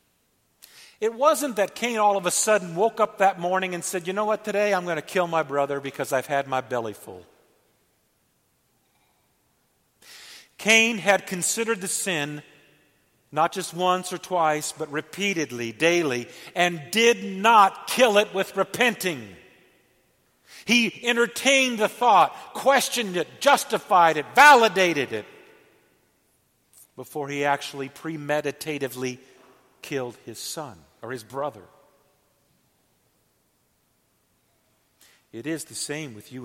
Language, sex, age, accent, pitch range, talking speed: English, male, 50-69, American, 130-185 Hz, 125 wpm